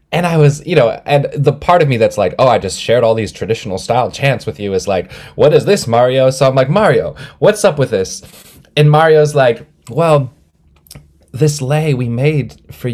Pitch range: 95-130 Hz